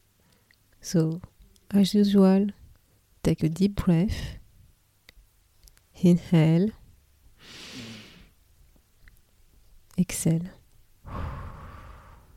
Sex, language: female, English